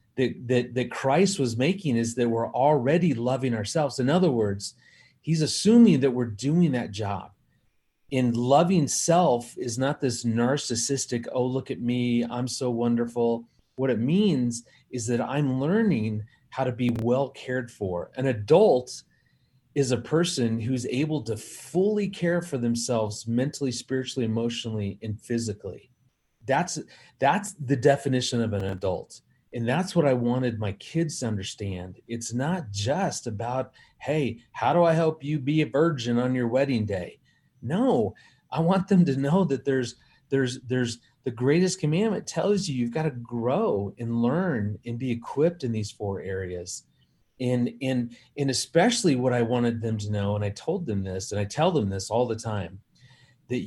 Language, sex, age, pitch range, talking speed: English, male, 30-49, 115-140 Hz, 170 wpm